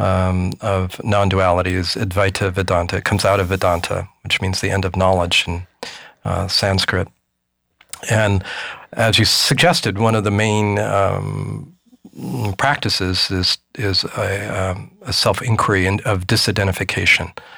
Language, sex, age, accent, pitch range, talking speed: English, male, 40-59, American, 95-115 Hz, 135 wpm